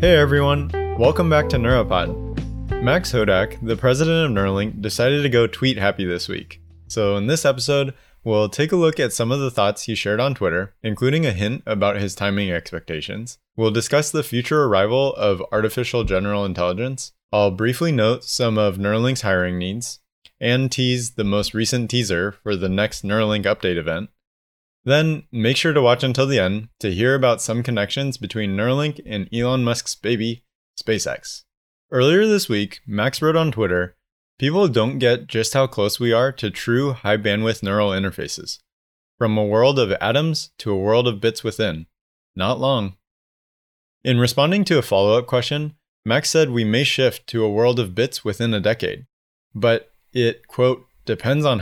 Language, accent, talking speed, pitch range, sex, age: English, American, 175 wpm, 100-130 Hz, male, 20-39